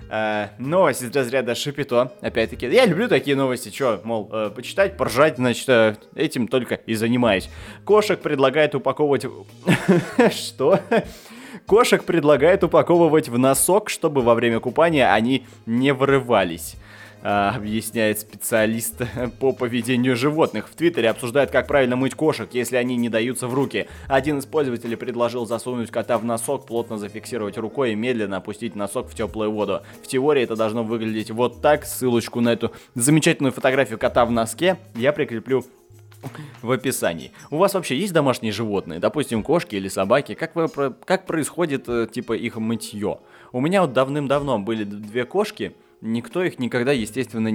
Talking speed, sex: 150 wpm, male